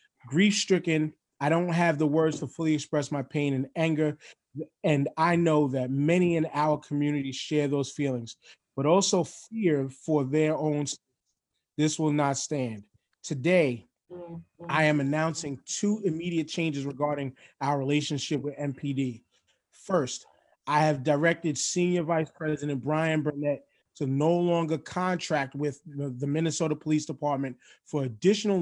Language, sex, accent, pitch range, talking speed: English, male, American, 140-165 Hz, 140 wpm